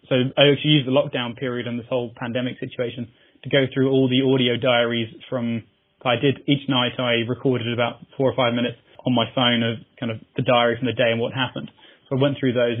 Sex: male